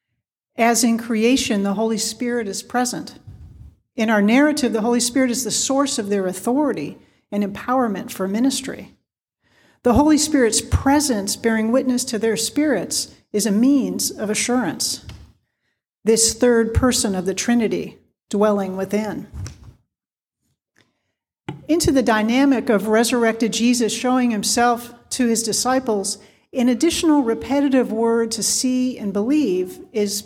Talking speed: 130 wpm